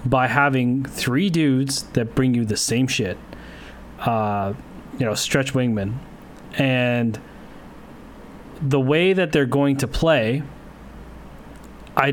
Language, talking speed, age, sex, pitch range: English, 115 wpm, 30-49, male, 120-150 Hz